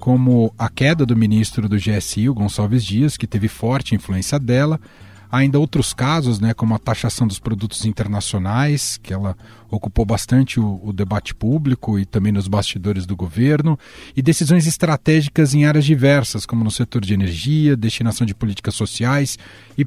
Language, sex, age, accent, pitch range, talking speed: Portuguese, male, 40-59, Brazilian, 110-145 Hz, 165 wpm